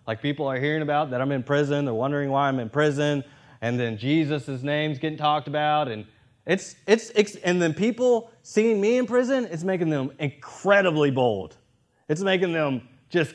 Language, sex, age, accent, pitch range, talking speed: English, male, 20-39, American, 125-155 Hz, 175 wpm